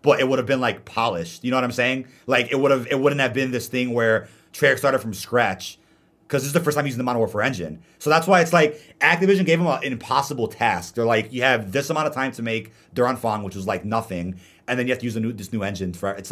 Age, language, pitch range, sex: 30-49, English, 100-135 Hz, male